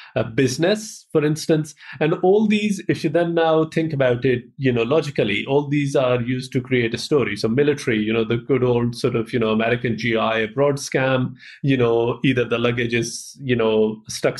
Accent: Indian